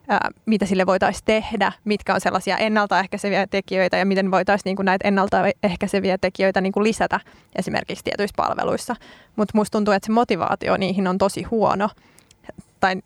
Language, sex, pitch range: Finnish, female, 190-210 Hz